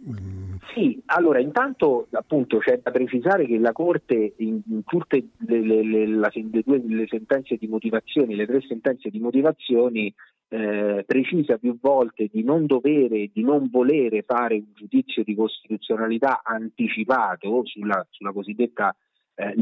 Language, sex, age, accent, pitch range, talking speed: Italian, male, 40-59, native, 110-135 Hz, 130 wpm